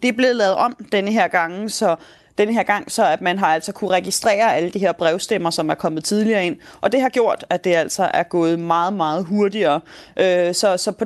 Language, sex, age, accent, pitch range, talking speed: Danish, female, 30-49, native, 180-220 Hz, 235 wpm